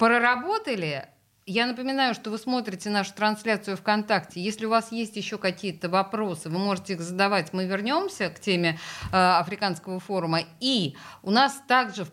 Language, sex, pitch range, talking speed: Russian, female, 170-230 Hz, 160 wpm